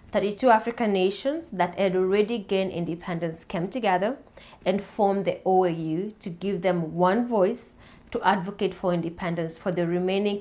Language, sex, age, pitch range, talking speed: English, female, 20-39, 180-230 Hz, 150 wpm